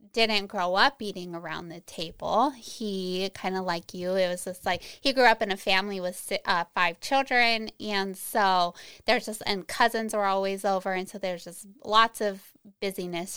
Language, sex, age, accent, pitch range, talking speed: English, female, 20-39, American, 185-220 Hz, 190 wpm